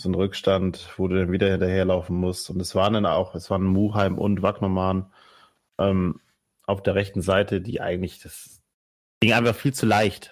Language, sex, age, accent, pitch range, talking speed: German, male, 30-49, German, 95-110 Hz, 180 wpm